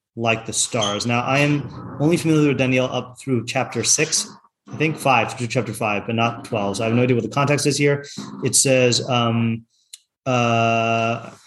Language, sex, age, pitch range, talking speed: English, male, 30-49, 120-140 Hz, 195 wpm